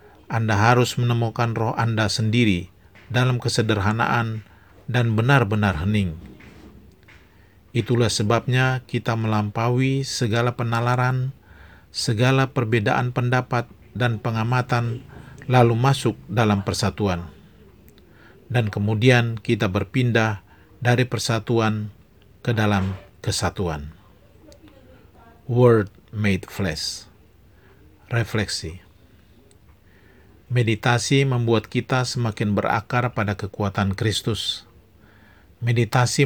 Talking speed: 80 wpm